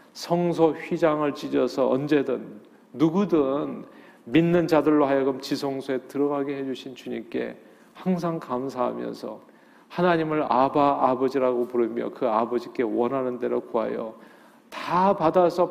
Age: 40-59